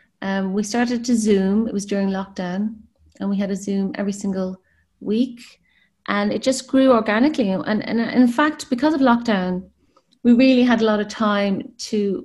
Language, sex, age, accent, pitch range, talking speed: English, female, 30-49, Irish, 190-220 Hz, 185 wpm